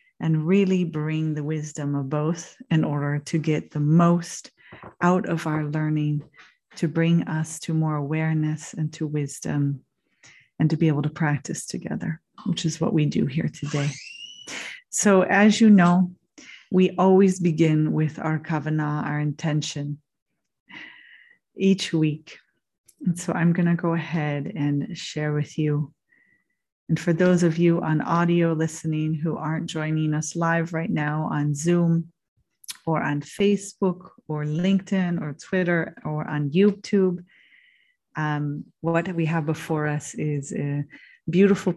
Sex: female